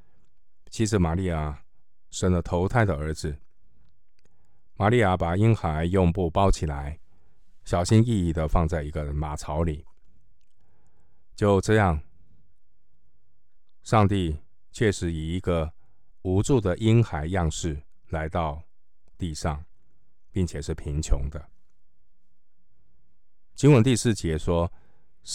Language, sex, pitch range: Chinese, male, 80-95 Hz